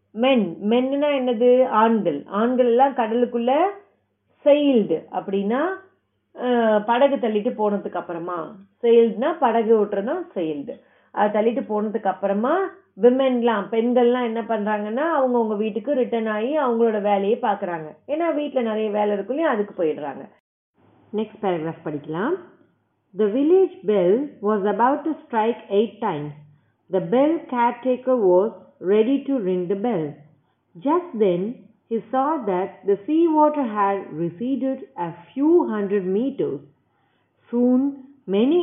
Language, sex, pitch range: Tamil, female, 200-270 Hz